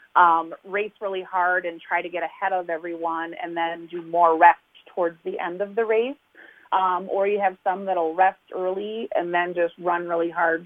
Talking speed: 210 wpm